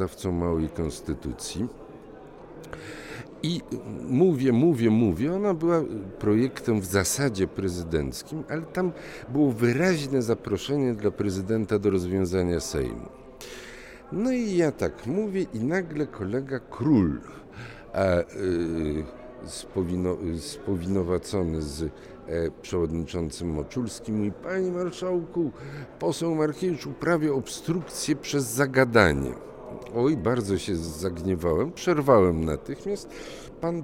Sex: male